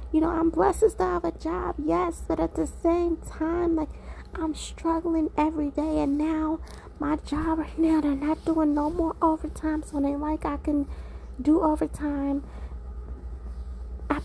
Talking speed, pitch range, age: 160 wpm, 260-310 Hz, 20-39